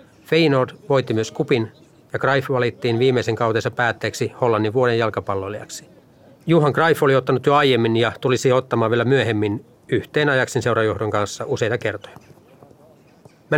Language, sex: Finnish, male